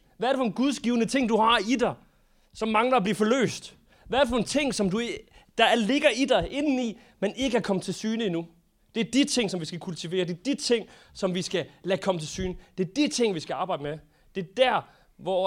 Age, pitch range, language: 30-49, 175-235 Hz, Danish